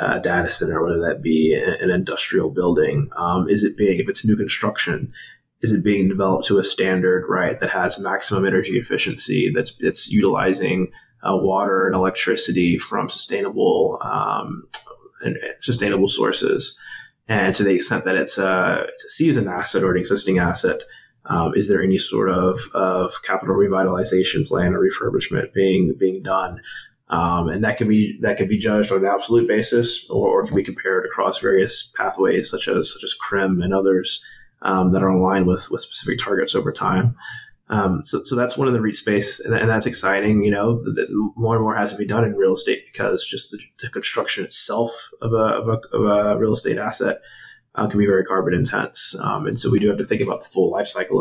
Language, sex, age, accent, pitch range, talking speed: English, male, 20-39, American, 95-120 Hz, 200 wpm